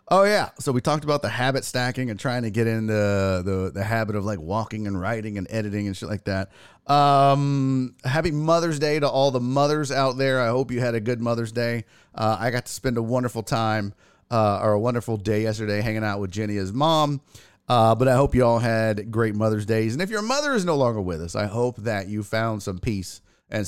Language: English